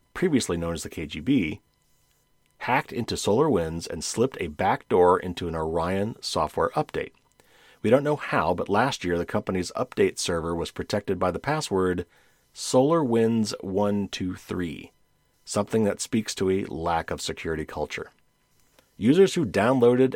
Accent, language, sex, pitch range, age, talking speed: American, English, male, 85-115 Hz, 40-59, 135 wpm